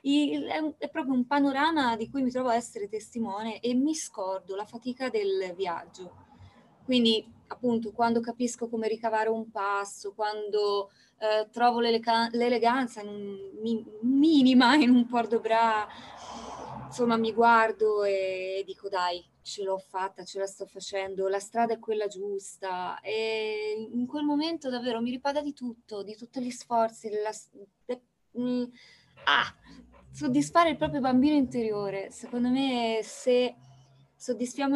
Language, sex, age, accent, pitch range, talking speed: Italian, female, 20-39, native, 200-240 Hz, 145 wpm